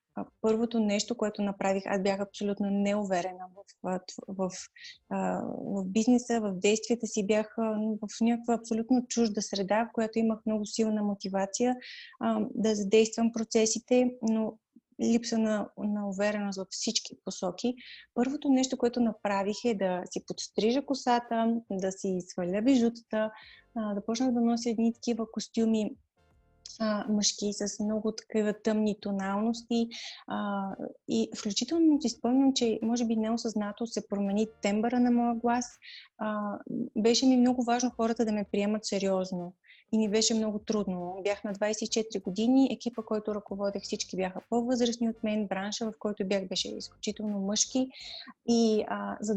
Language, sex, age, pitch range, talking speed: Bulgarian, female, 20-39, 205-235 Hz, 140 wpm